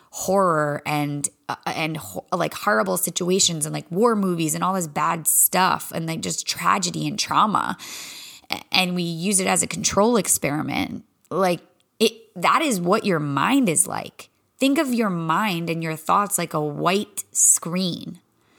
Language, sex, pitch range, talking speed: English, female, 170-210 Hz, 160 wpm